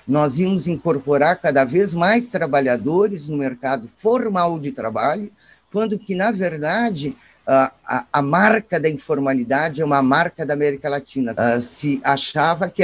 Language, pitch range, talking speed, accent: Portuguese, 135-190 Hz, 140 wpm, Brazilian